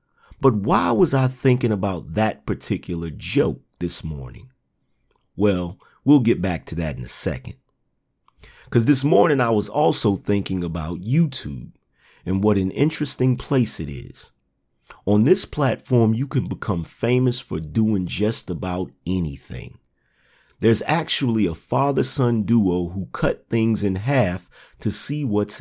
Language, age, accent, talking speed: English, 40-59, American, 145 wpm